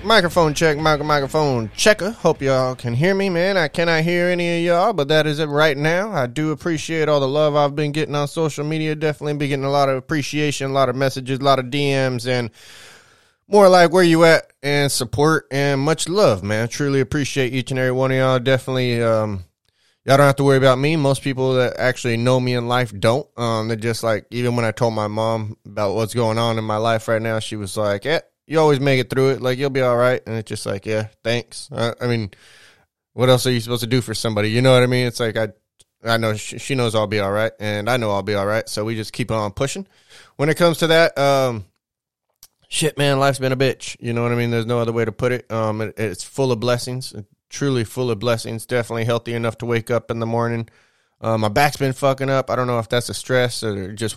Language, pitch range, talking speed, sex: English, 115-145 Hz, 255 wpm, male